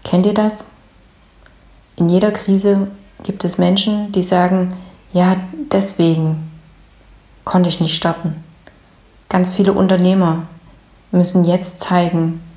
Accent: German